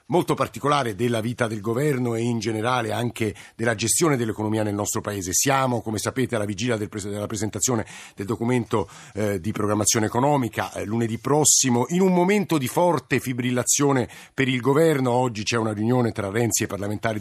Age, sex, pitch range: 50-69, male, 115-145 Hz